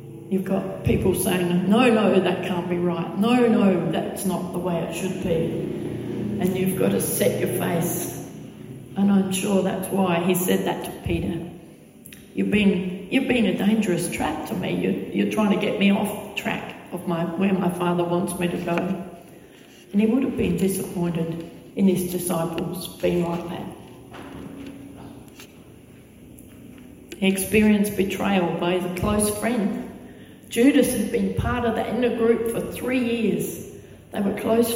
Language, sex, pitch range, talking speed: English, female, 170-205 Hz, 165 wpm